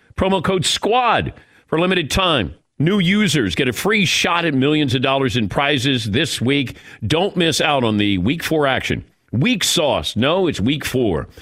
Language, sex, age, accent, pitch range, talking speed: English, male, 50-69, American, 115-160 Hz, 180 wpm